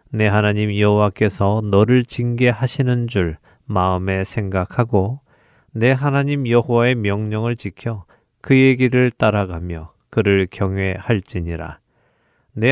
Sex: male